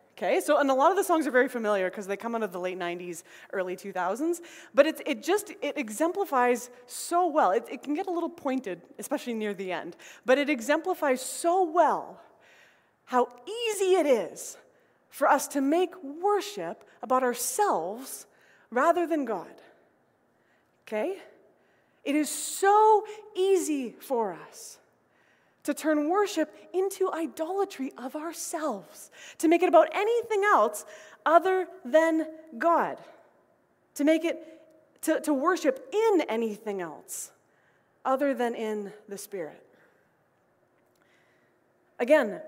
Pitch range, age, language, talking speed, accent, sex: 245-345 Hz, 20-39, English, 135 wpm, American, female